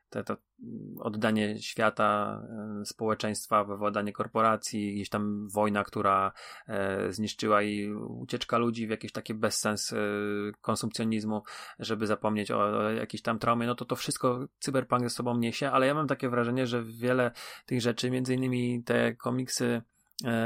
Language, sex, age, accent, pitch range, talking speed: Polish, male, 30-49, native, 110-130 Hz, 145 wpm